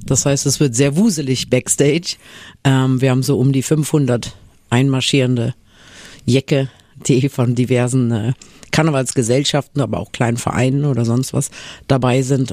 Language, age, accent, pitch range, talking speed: German, 50-69, German, 125-165 Hz, 135 wpm